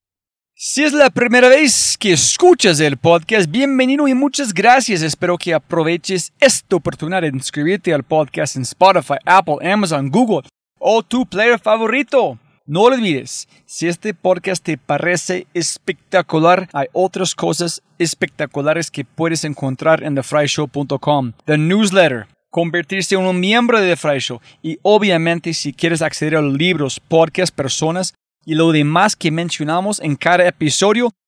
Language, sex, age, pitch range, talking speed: Spanish, male, 30-49, 150-200 Hz, 140 wpm